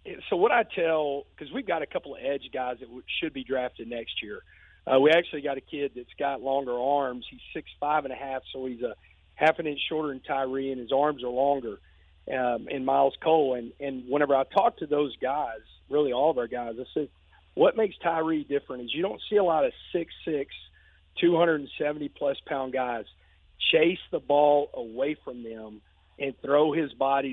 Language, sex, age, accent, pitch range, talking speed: English, male, 40-59, American, 125-150 Hz, 200 wpm